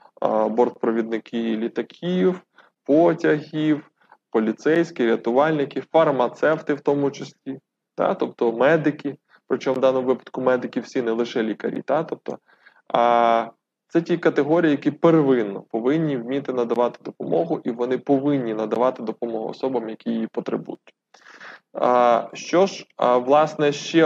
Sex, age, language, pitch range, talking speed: male, 20-39, Ukrainian, 120-145 Hz, 105 wpm